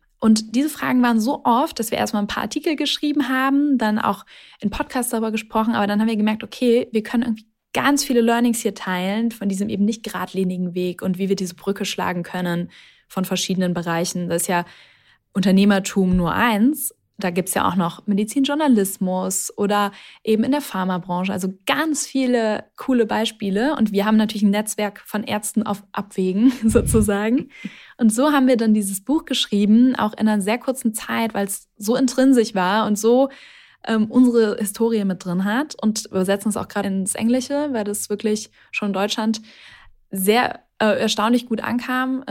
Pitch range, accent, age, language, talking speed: 195-235 Hz, German, 10-29, German, 185 wpm